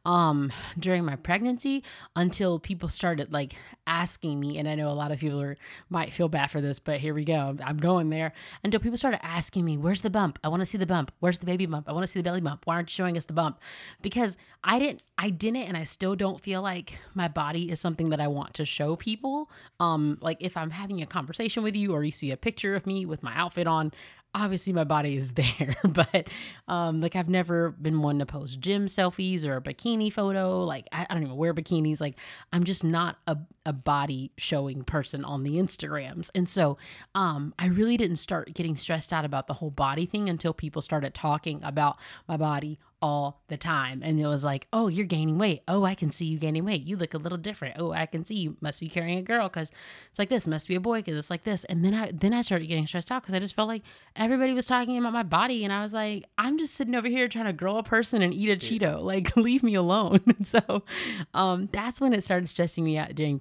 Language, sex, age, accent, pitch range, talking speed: English, female, 20-39, American, 155-200 Hz, 245 wpm